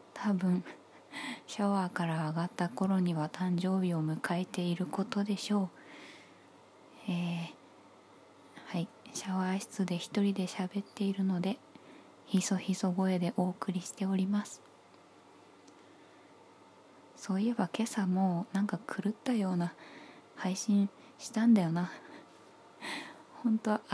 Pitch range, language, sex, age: 185-220 Hz, Japanese, female, 20-39